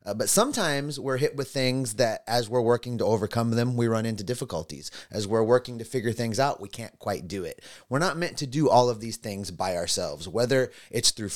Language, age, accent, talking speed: English, 30-49, American, 230 wpm